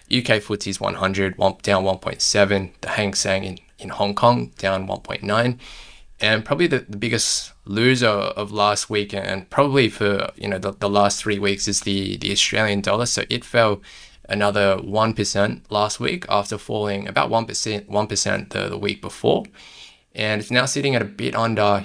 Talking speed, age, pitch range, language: 175 wpm, 10-29, 100-110 Hz, English